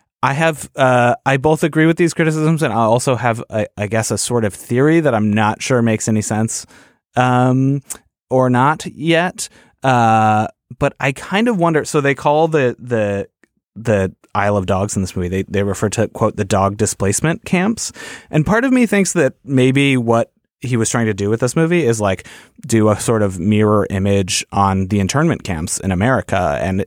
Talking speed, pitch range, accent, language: 200 wpm, 95-130 Hz, American, English